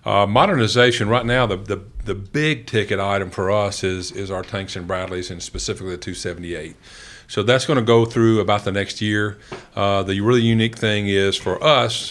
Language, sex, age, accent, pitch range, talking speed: English, male, 50-69, American, 100-115 Hz, 200 wpm